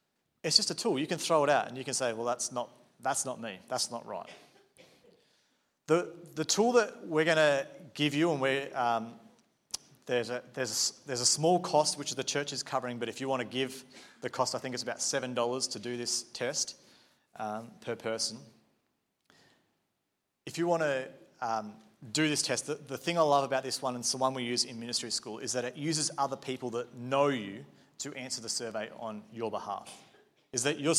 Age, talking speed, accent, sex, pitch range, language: 30-49, 215 wpm, Australian, male, 120-145 Hz, English